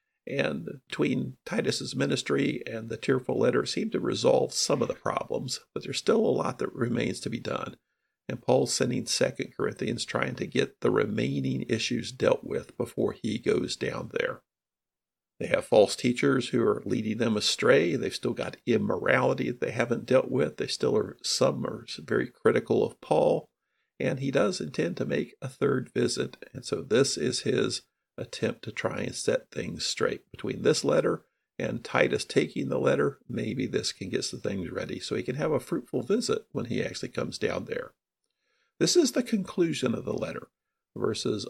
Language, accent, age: English, American, 50-69